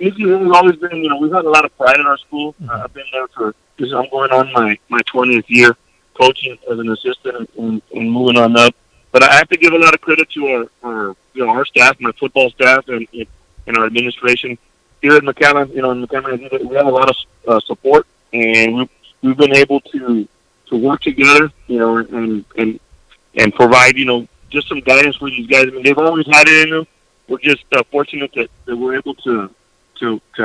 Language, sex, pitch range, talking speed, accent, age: English, male, 120-145 Hz, 225 wpm, American, 40-59